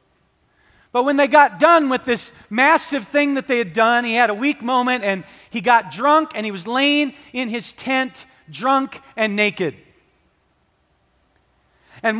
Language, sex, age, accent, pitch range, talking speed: English, male, 40-59, American, 200-310 Hz, 160 wpm